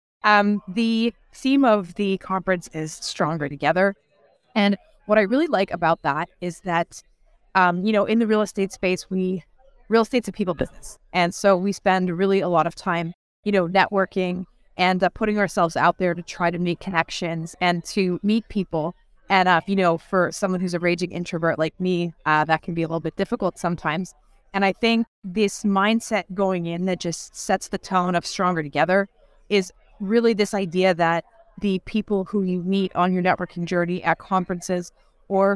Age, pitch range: 20-39, 170-200 Hz